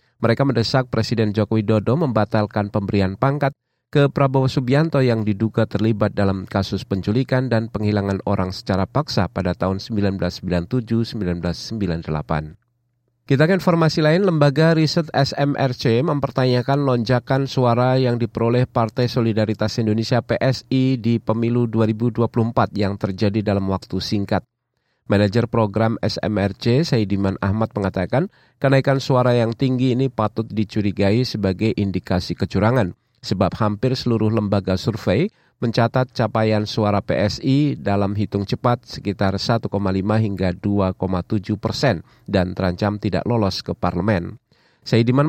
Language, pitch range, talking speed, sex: Indonesian, 100-125 Hz, 120 wpm, male